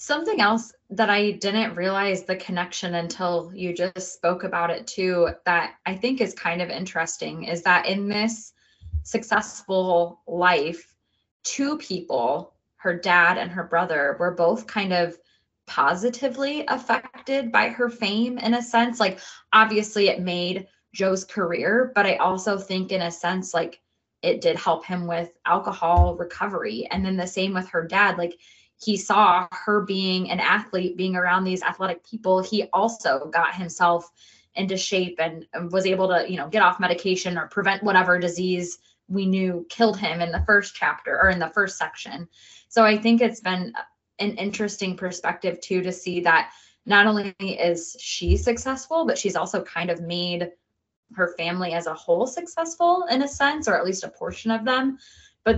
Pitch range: 175-215 Hz